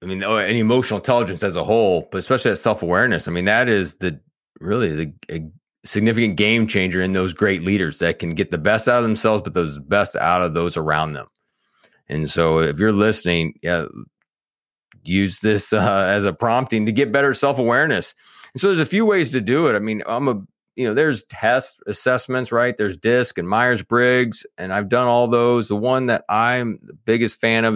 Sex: male